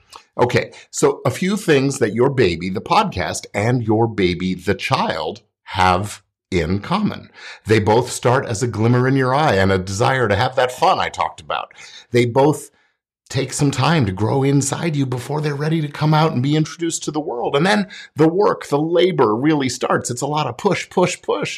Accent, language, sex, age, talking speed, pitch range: American, English, male, 50-69, 205 wpm, 105-155 Hz